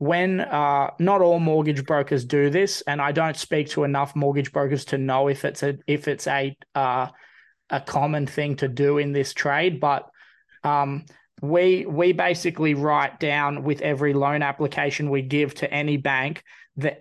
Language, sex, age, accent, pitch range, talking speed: English, male, 20-39, Australian, 140-155 Hz, 175 wpm